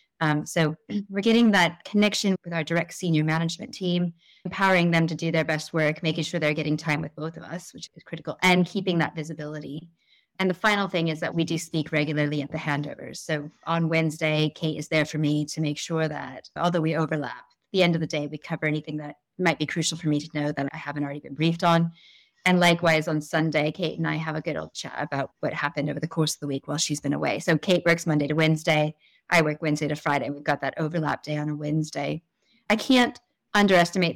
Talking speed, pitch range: 235 wpm, 150-170 Hz